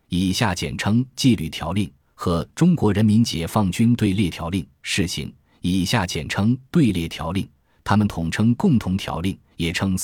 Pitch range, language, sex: 85-115 Hz, Chinese, male